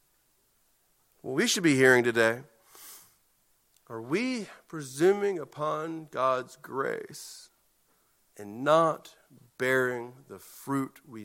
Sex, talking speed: male, 95 wpm